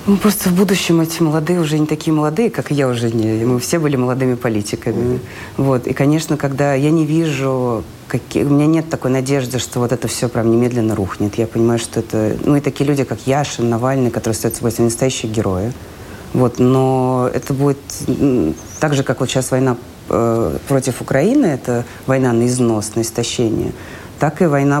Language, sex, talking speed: Russian, female, 185 wpm